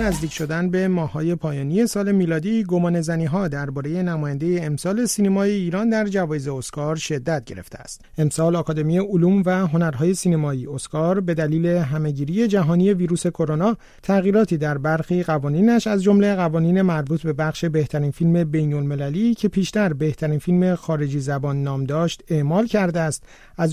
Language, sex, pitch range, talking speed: Persian, male, 150-190 Hz, 145 wpm